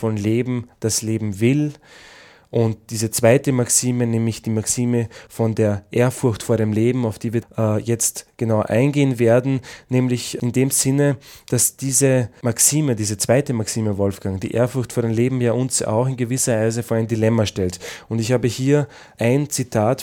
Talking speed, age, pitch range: 175 wpm, 20-39, 115-130 Hz